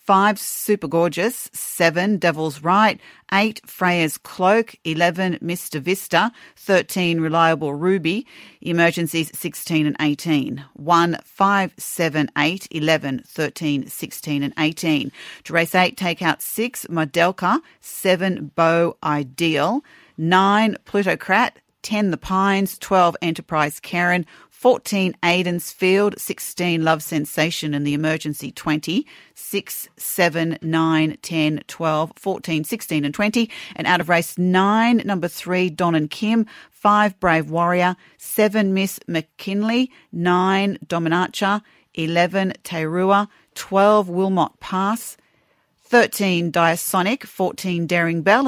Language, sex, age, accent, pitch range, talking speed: English, female, 40-59, Australian, 160-195 Hz, 120 wpm